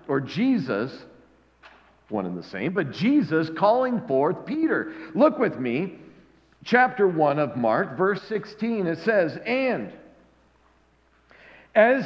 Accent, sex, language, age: American, male, English, 50-69